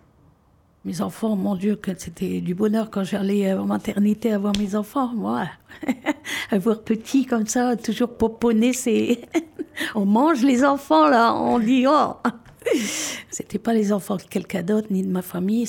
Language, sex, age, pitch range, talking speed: French, female, 50-69, 175-235 Hz, 165 wpm